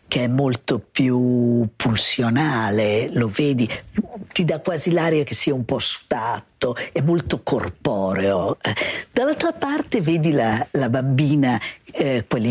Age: 50-69